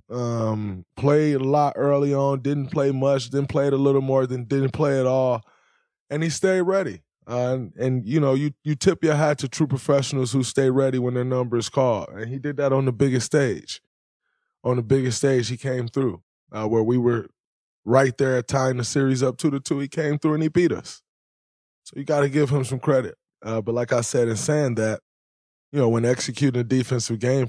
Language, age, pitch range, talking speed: English, 20-39, 110-135 Hz, 225 wpm